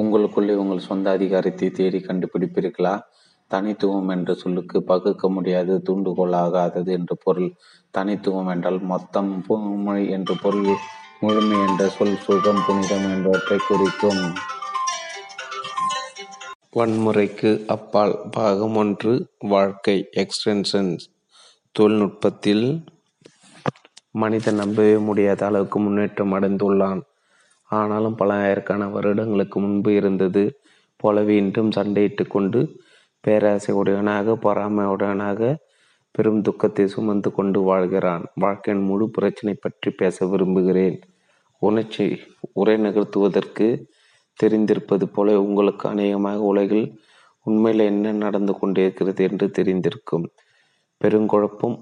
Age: 30-49